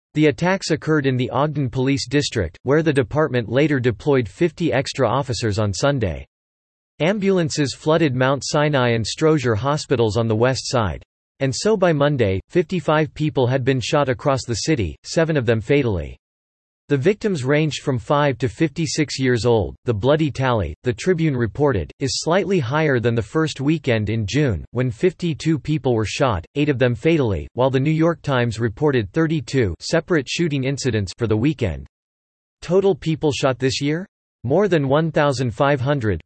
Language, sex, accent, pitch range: English, male, American, 115-150 Hz